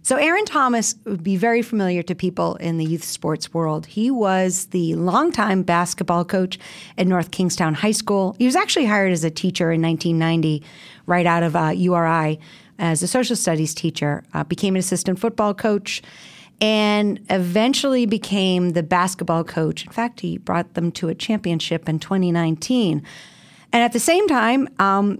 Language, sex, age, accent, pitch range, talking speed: English, female, 40-59, American, 170-225 Hz, 170 wpm